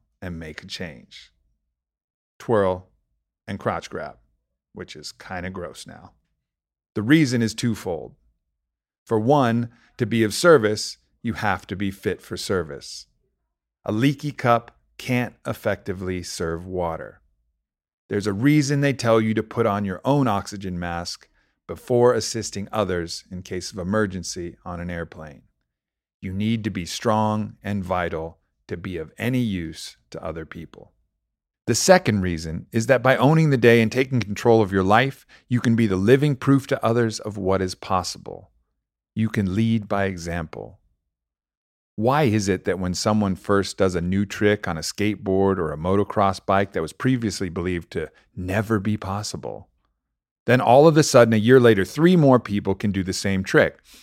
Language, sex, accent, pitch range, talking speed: English, male, American, 90-115 Hz, 165 wpm